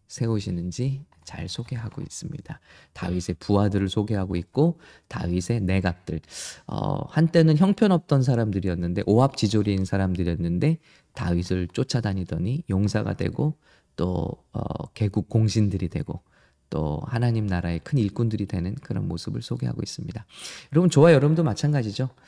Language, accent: English, Korean